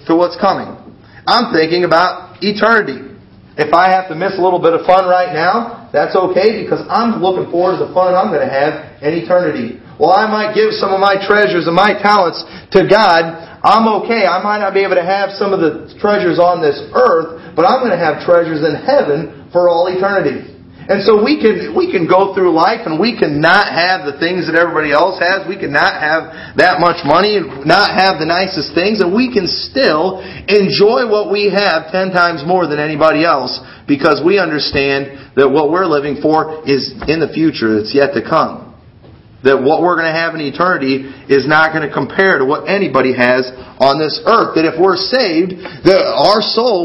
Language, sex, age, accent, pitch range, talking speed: English, male, 40-59, American, 150-195 Hz, 210 wpm